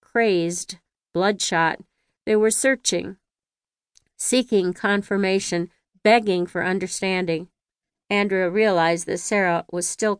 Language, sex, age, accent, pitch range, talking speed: English, female, 50-69, American, 175-210 Hz, 95 wpm